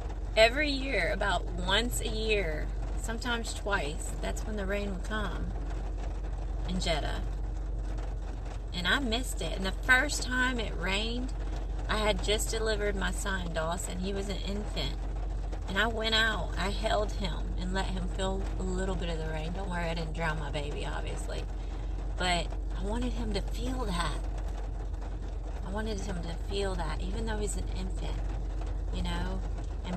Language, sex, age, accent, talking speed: English, female, 30-49, American, 165 wpm